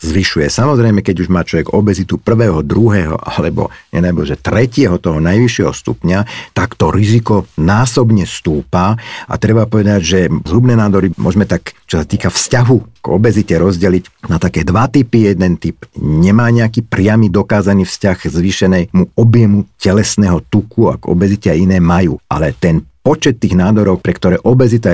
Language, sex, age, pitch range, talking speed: Slovak, male, 50-69, 90-115 Hz, 155 wpm